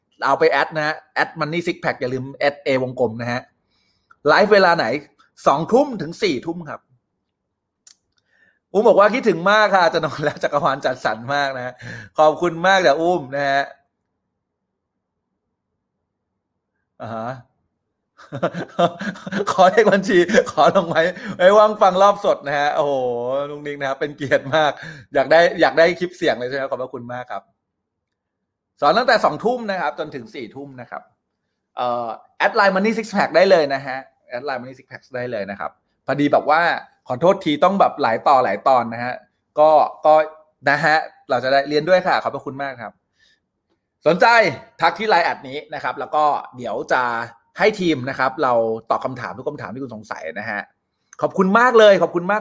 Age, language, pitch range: 20-39, Thai, 130-195 Hz